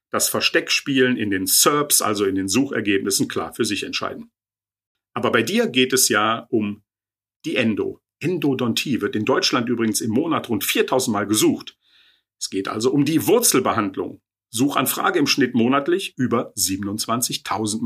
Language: German